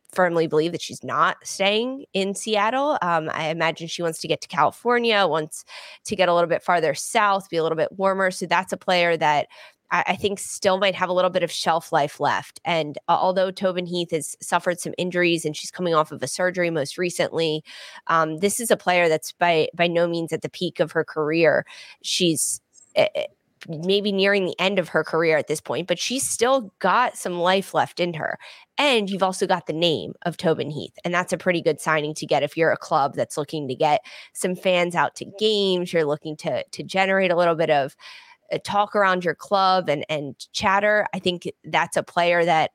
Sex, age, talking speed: female, 20-39, 215 wpm